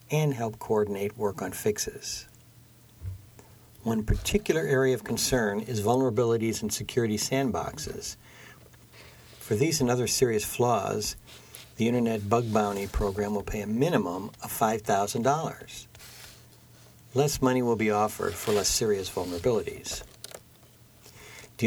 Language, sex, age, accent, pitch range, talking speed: English, male, 60-79, American, 110-125 Hz, 120 wpm